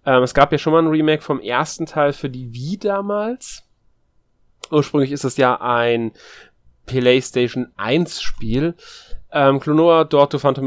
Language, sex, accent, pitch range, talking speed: German, male, German, 120-150 Hz, 150 wpm